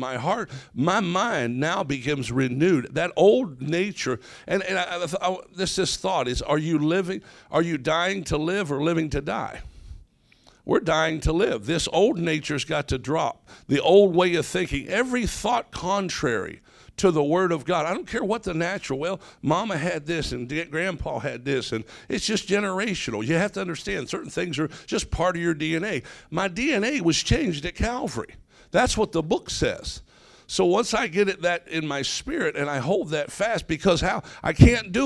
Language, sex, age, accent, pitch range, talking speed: English, male, 60-79, American, 145-185 Hz, 190 wpm